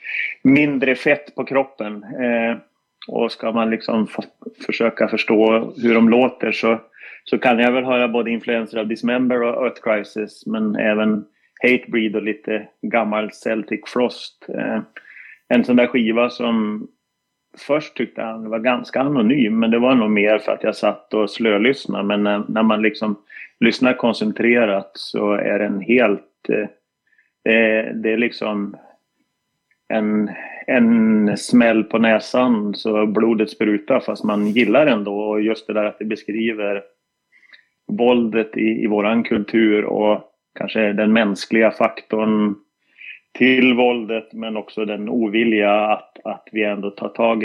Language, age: Swedish, 30-49